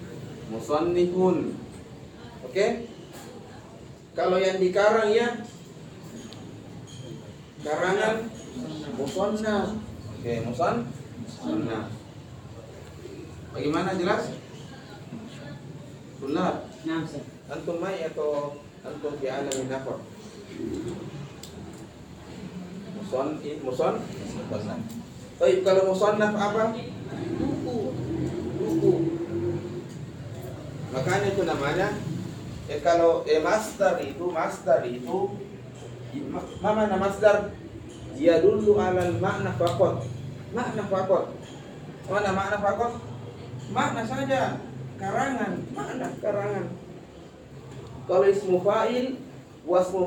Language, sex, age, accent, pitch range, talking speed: Indonesian, male, 30-49, native, 135-195 Hz, 80 wpm